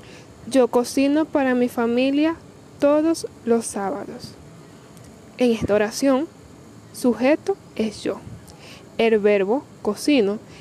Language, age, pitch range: Spanish, 10-29, 235-290 Hz